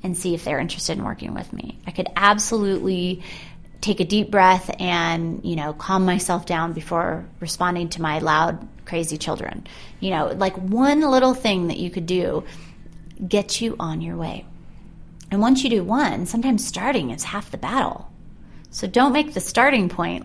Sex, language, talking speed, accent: female, English, 180 wpm, American